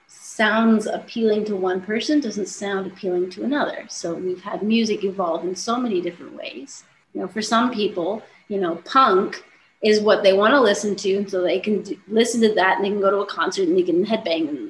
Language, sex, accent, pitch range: English, female, American, 195-230 Hz